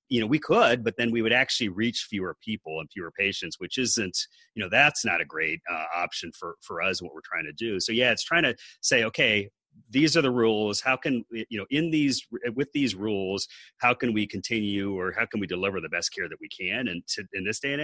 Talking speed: 250 wpm